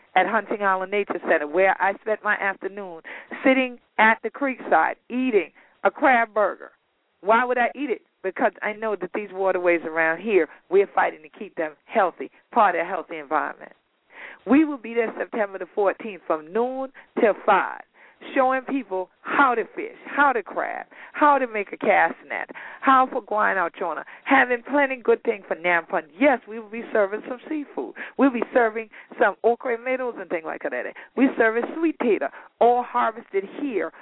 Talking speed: 180 wpm